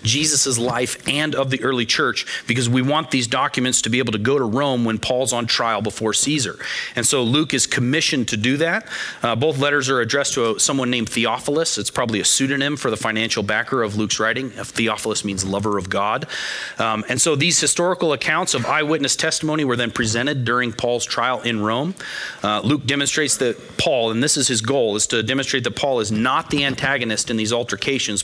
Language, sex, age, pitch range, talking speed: English, male, 30-49, 110-140 Hz, 205 wpm